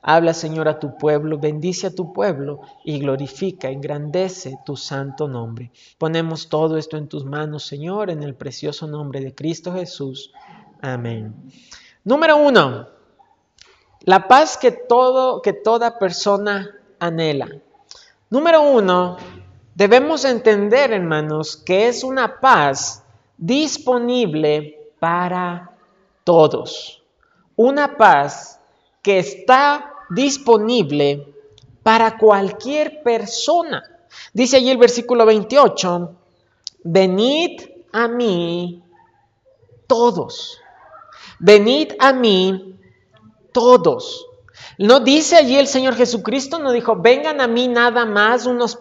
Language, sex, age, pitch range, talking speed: Spanish, male, 40-59, 160-255 Hz, 105 wpm